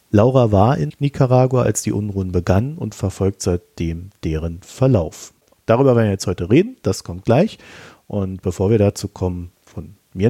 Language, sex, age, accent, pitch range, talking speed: German, male, 40-59, German, 95-130 Hz, 170 wpm